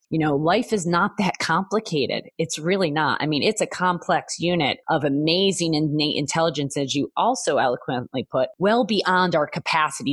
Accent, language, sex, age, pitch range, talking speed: American, English, female, 30-49, 155-215 Hz, 170 wpm